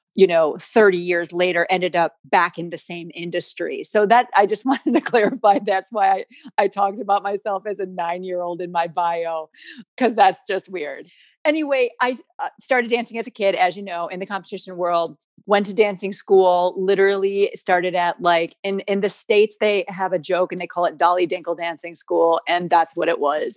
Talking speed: 205 wpm